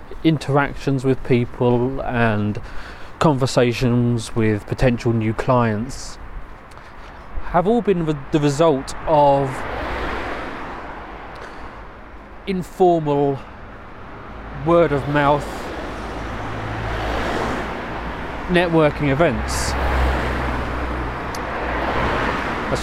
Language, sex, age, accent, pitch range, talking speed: English, male, 30-49, British, 95-145 Hz, 60 wpm